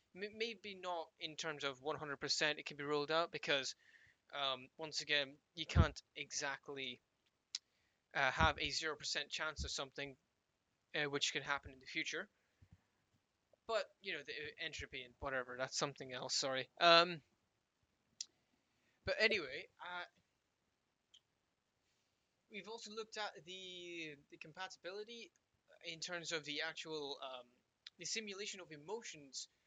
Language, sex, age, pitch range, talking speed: English, male, 20-39, 135-170 Hz, 130 wpm